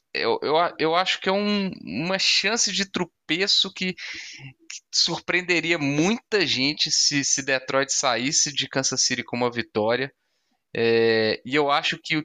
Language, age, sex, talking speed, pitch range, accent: Portuguese, 20-39, male, 145 wpm, 115-165 Hz, Brazilian